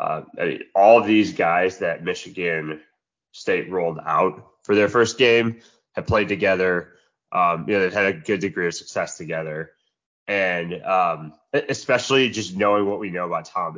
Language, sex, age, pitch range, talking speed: English, male, 20-39, 90-115 Hz, 155 wpm